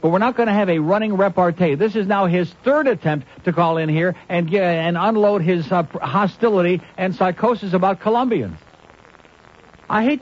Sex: male